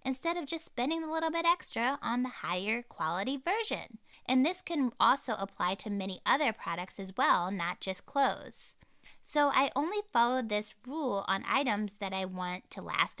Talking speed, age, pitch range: 180 wpm, 20-39, 185-260 Hz